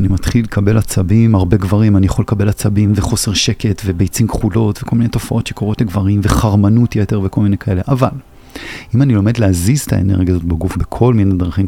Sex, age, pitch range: male, 30-49, 100-120 Hz